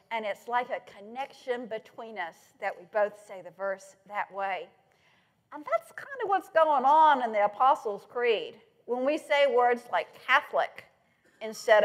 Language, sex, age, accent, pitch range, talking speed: English, female, 50-69, American, 225-315 Hz, 165 wpm